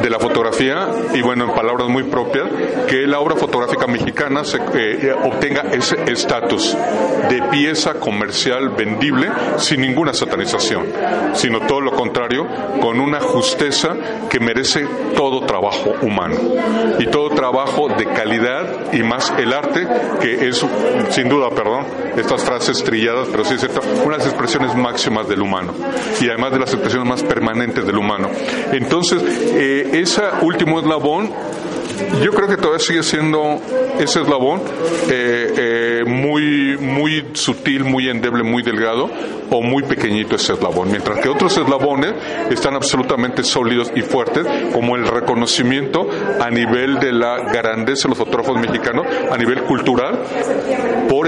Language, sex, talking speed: Spanish, male, 145 wpm